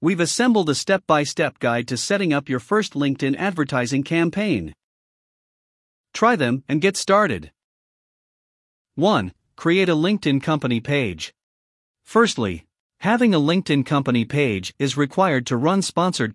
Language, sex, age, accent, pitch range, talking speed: English, male, 50-69, American, 125-185 Hz, 130 wpm